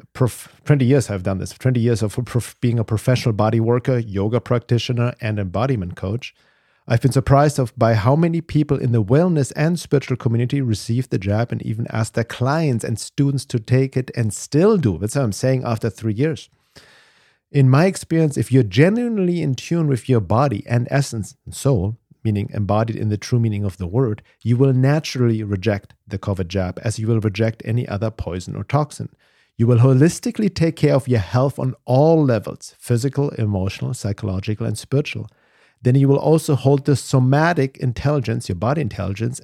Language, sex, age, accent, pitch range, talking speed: English, male, 50-69, German, 110-140 Hz, 185 wpm